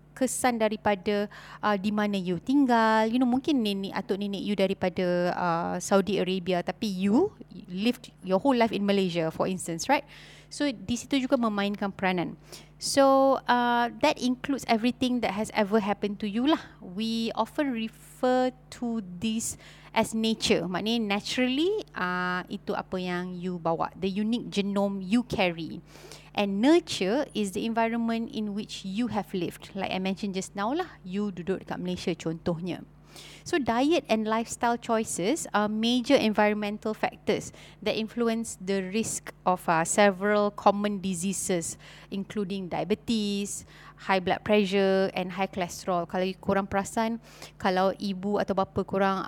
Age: 20-39